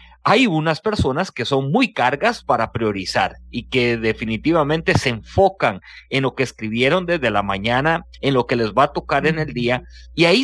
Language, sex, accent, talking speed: English, male, Mexican, 190 wpm